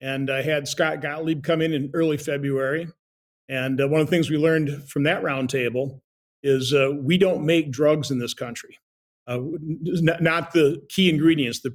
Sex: male